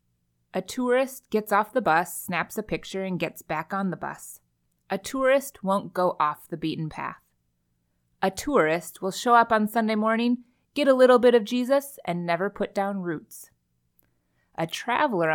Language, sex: English, female